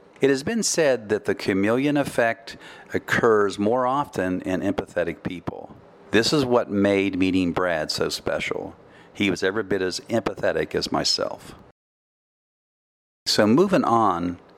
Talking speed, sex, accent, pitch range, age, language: 135 wpm, male, American, 90-110 Hz, 50-69, English